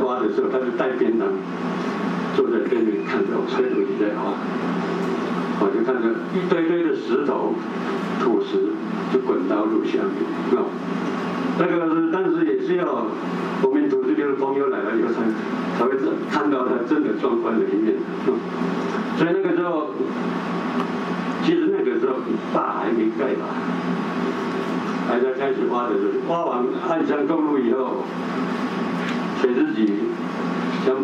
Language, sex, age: Chinese, male, 60-79